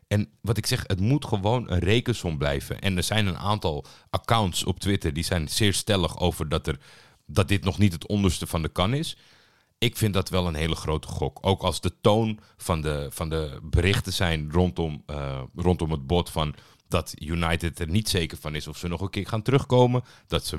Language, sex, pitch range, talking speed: Dutch, male, 85-110 Hz, 220 wpm